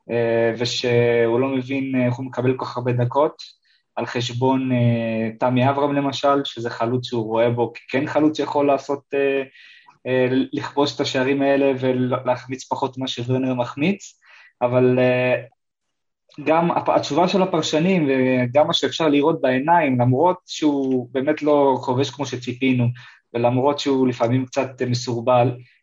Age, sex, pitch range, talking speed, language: 20-39, male, 120-140 Hz, 130 wpm, Hebrew